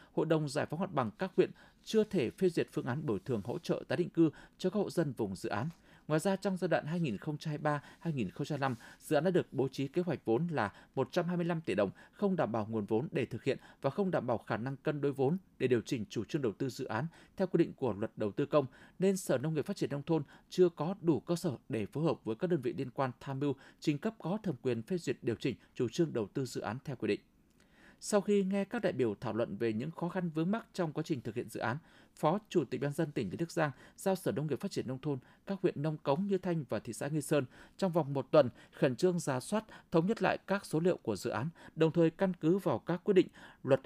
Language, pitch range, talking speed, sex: Vietnamese, 130-180 Hz, 270 wpm, male